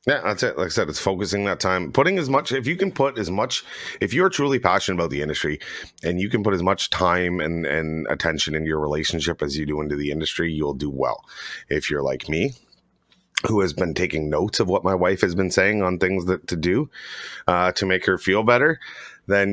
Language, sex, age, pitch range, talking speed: English, male, 30-49, 80-120 Hz, 235 wpm